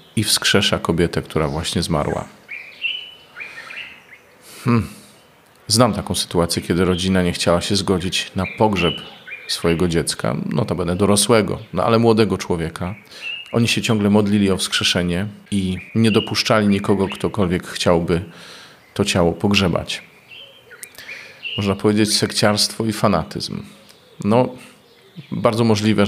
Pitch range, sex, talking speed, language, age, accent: 90-110 Hz, male, 115 wpm, Polish, 40-59, native